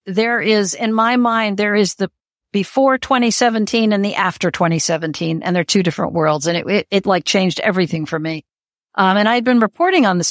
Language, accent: English, American